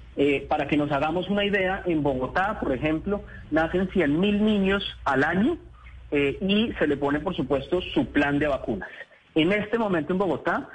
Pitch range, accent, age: 145-200 Hz, Colombian, 30-49